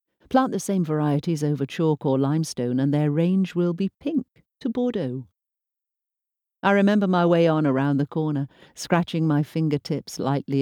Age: 50-69